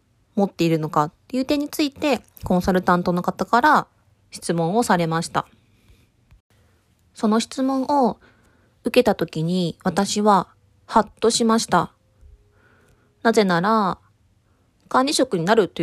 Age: 20-39